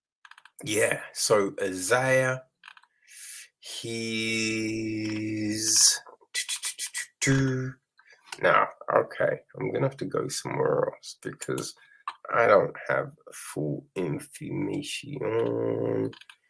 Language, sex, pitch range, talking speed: English, male, 105-170 Hz, 70 wpm